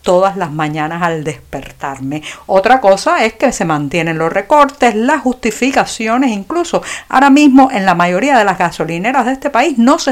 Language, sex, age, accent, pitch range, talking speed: Spanish, female, 50-69, American, 190-255 Hz, 170 wpm